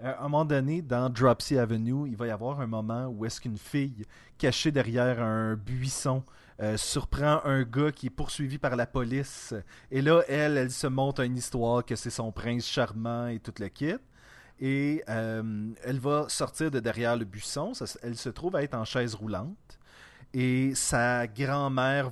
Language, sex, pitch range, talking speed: French, male, 120-155 Hz, 185 wpm